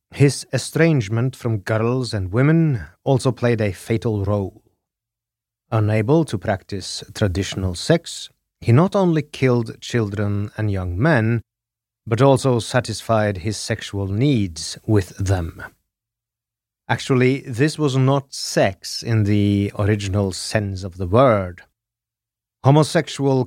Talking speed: 115 wpm